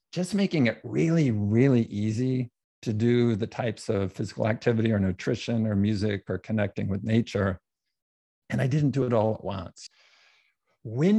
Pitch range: 105-130 Hz